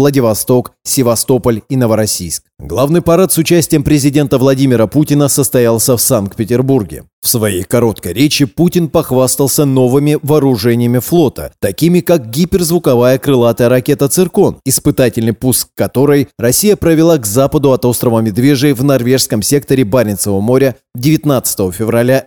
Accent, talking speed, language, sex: native, 125 wpm, Russian, male